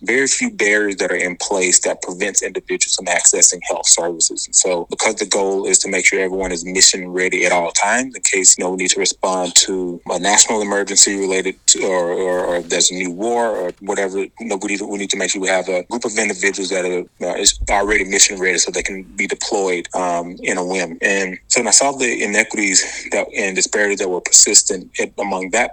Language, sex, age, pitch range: English, male, 20-39, 90-100 Hz